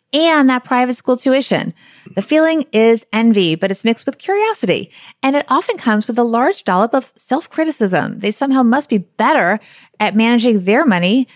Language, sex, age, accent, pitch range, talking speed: English, female, 30-49, American, 205-265 Hz, 175 wpm